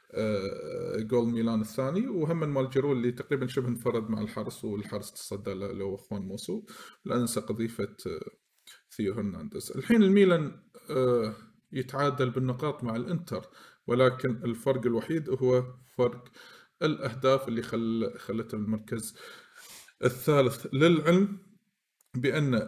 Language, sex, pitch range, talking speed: Arabic, male, 115-140 Hz, 105 wpm